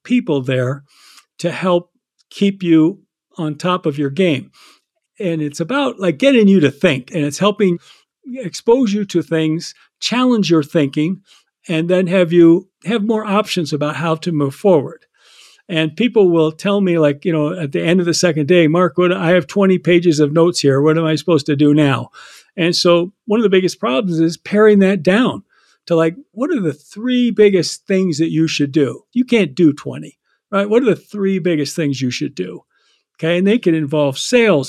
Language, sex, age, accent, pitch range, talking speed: English, male, 50-69, American, 155-190 Hz, 200 wpm